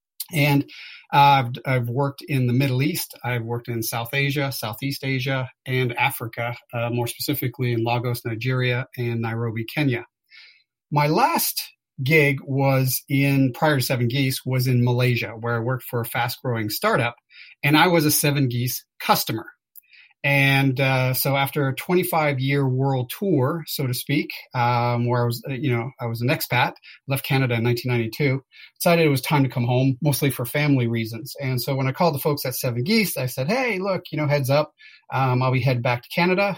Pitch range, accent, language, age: 120-145 Hz, American, English, 40-59